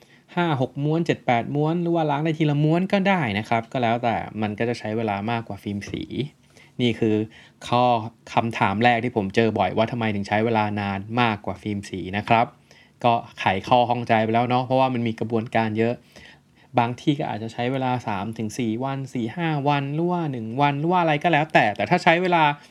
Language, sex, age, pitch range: Thai, male, 20-39, 110-130 Hz